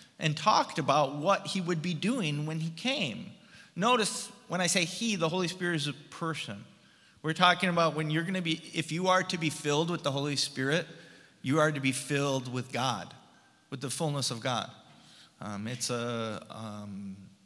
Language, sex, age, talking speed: English, male, 30-49, 190 wpm